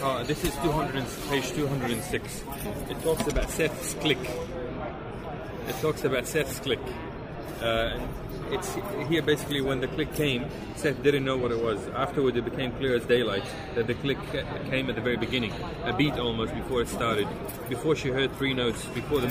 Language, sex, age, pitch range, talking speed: English, male, 30-49, 115-135 Hz, 180 wpm